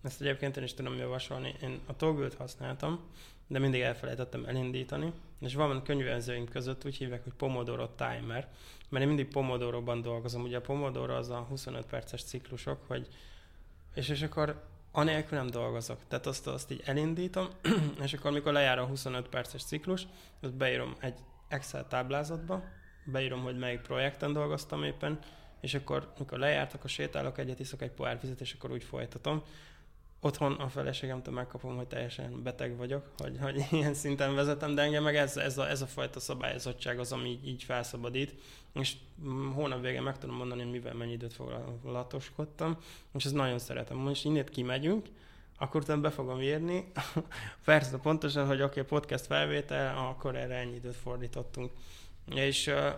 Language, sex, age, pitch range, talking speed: Hungarian, male, 20-39, 125-145 Hz, 160 wpm